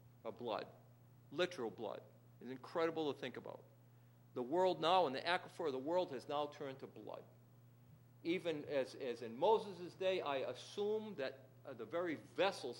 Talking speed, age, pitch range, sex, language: 170 wpm, 50-69, 120-170 Hz, male, English